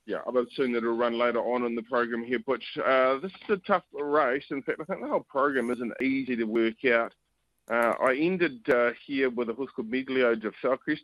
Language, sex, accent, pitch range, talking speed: English, male, Australian, 110-130 Hz, 240 wpm